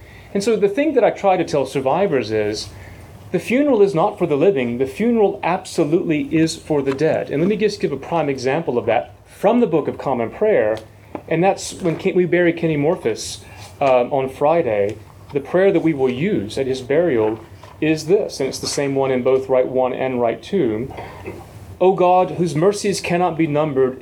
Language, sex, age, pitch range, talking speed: English, male, 30-49, 125-170 Hz, 200 wpm